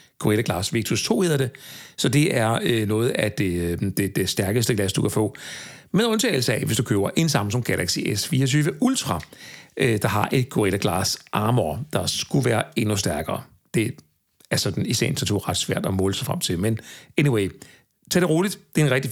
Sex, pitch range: male, 115-165 Hz